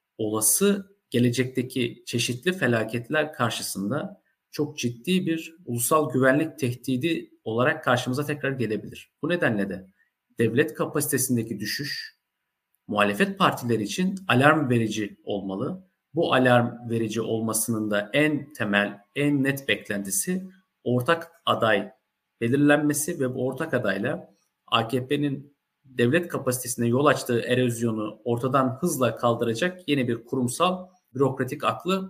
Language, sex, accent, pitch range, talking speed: Turkish, male, native, 115-160 Hz, 110 wpm